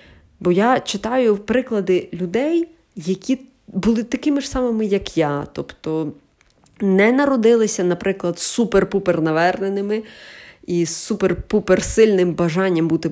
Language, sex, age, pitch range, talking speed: Ukrainian, female, 20-39, 165-235 Hz, 95 wpm